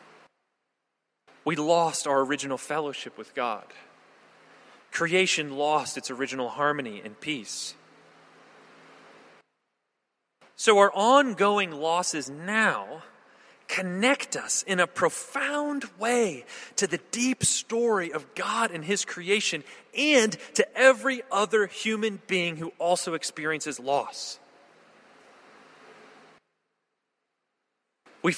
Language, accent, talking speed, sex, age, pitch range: English, American, 95 wpm, male, 30-49, 160-230 Hz